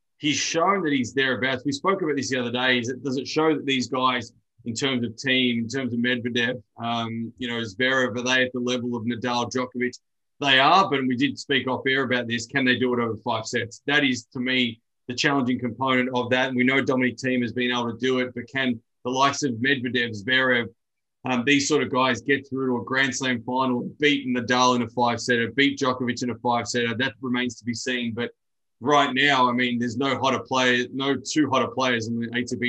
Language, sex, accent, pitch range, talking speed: English, male, Australian, 120-135 Hz, 235 wpm